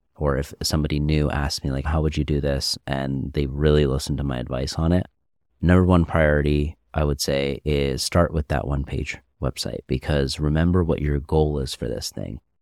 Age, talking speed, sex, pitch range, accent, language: 30-49, 205 wpm, male, 70-80 Hz, American, English